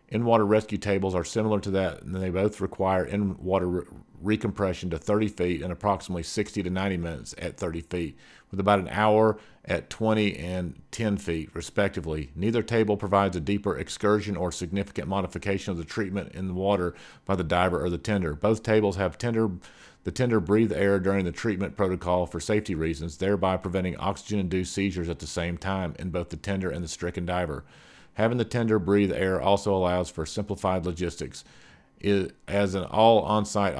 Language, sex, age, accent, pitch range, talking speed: English, male, 50-69, American, 90-105 Hz, 185 wpm